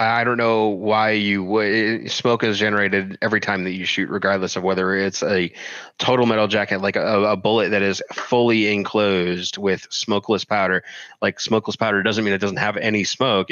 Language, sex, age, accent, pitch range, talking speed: English, male, 30-49, American, 95-110 Hz, 185 wpm